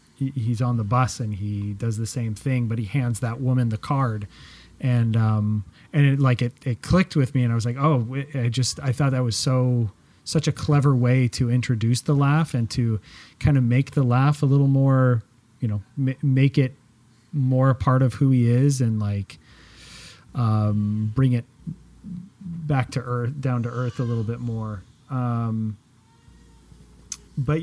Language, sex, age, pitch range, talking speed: English, male, 30-49, 120-145 Hz, 185 wpm